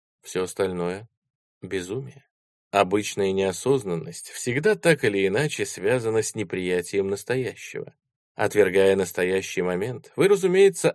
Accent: native